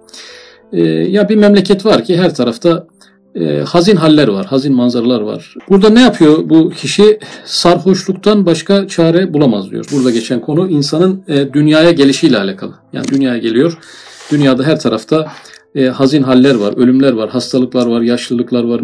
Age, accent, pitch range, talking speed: 50-69, native, 125-170 Hz, 145 wpm